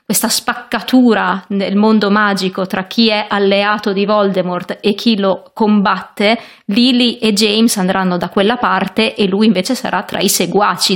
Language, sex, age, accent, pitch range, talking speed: Italian, female, 30-49, native, 190-225 Hz, 160 wpm